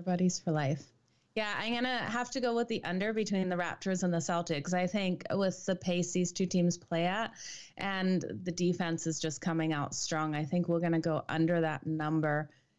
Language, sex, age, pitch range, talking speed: English, female, 20-39, 160-195 Hz, 205 wpm